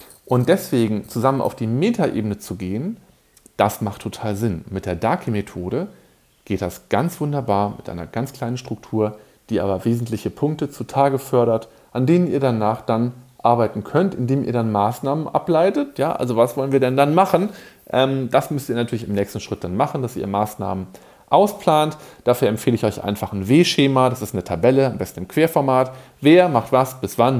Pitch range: 105-140 Hz